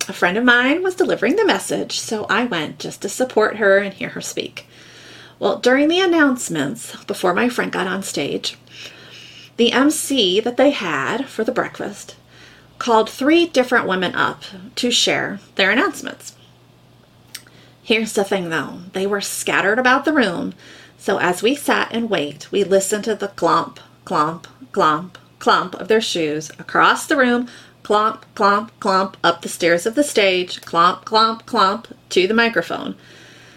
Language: English